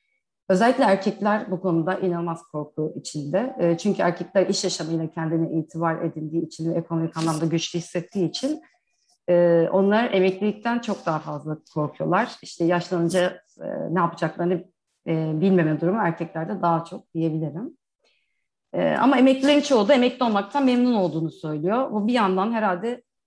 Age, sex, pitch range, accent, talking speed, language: 40-59, female, 165-215 Hz, native, 125 wpm, Turkish